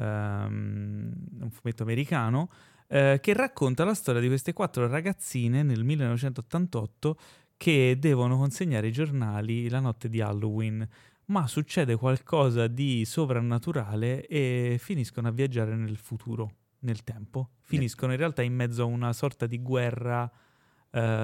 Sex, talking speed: male, 135 wpm